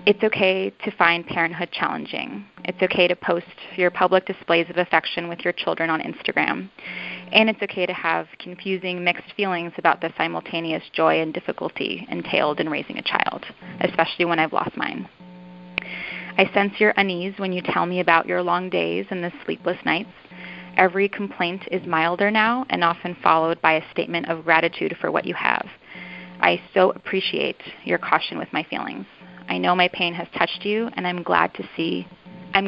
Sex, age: female, 20-39